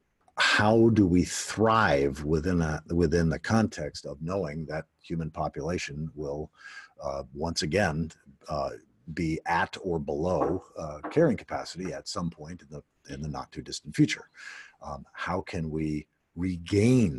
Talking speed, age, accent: 145 wpm, 50-69, American